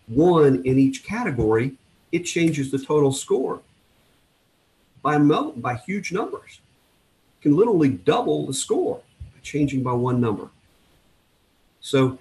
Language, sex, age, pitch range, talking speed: English, male, 50-69, 110-145 Hz, 120 wpm